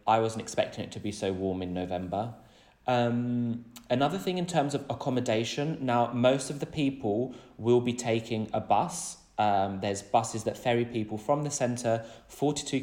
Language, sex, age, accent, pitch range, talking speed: Greek, male, 20-39, British, 105-130 Hz, 175 wpm